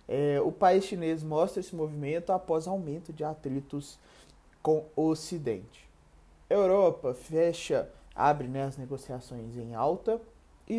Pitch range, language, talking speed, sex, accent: 145-175 Hz, Portuguese, 120 wpm, male, Brazilian